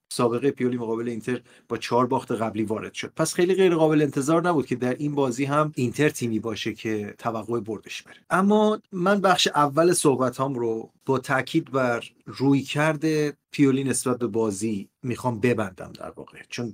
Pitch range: 115-145 Hz